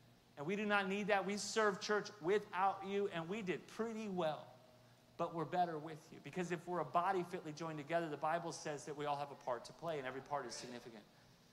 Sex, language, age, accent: male, English, 40-59, American